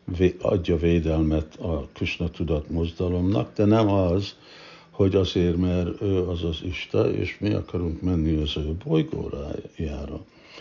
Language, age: Hungarian, 60-79